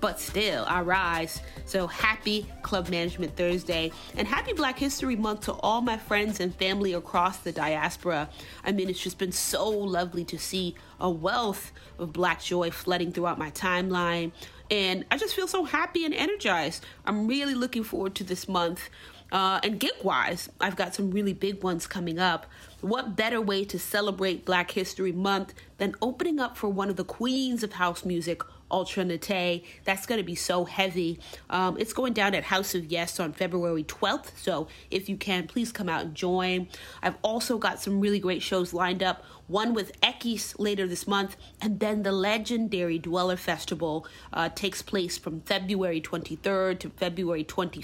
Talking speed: 180 wpm